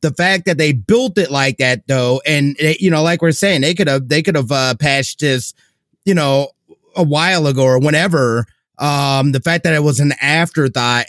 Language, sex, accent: English, male, American